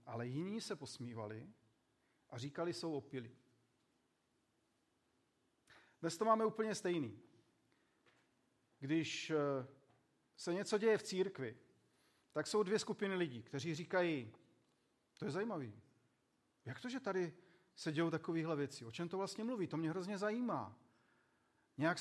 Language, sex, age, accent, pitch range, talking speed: Czech, male, 40-59, native, 130-185 Hz, 130 wpm